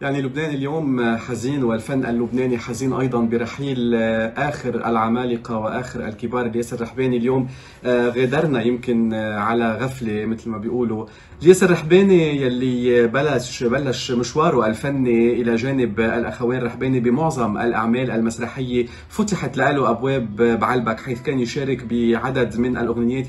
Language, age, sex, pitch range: Arabic, 40-59, male, 120-135 Hz